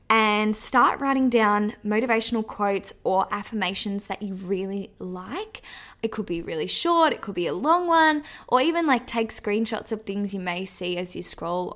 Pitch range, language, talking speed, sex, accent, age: 195-235 Hz, English, 185 wpm, female, Australian, 10-29